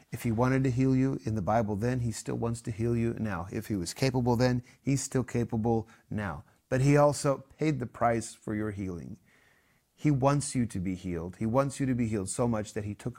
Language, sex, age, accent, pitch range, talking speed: English, male, 30-49, American, 110-130 Hz, 235 wpm